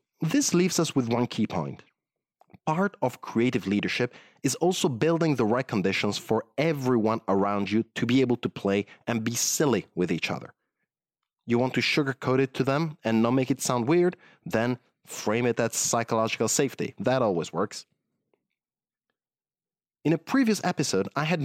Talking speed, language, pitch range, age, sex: 170 wpm, English, 110-150 Hz, 30-49, male